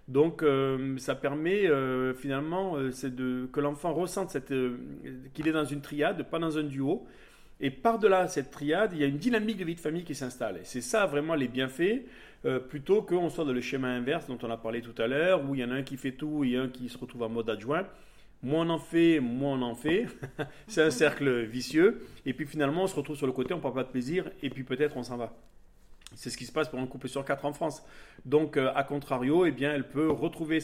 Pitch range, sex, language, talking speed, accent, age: 125-155 Hz, male, French, 255 wpm, French, 40-59